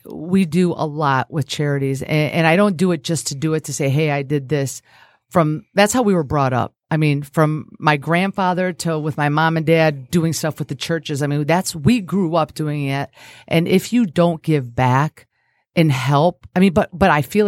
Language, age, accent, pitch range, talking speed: English, 40-59, American, 145-180 Hz, 225 wpm